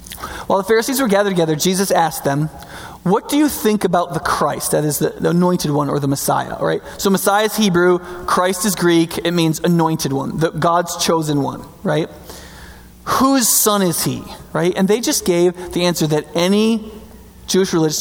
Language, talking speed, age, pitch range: English, 190 wpm, 20-39, 160-220 Hz